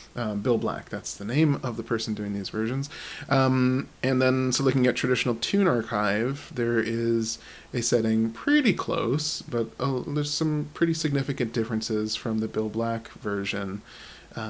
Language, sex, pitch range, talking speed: English, male, 110-145 Hz, 165 wpm